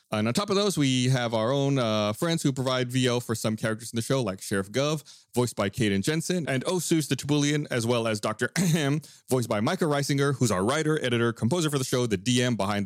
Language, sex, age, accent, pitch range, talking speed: English, male, 30-49, American, 115-155 Hz, 240 wpm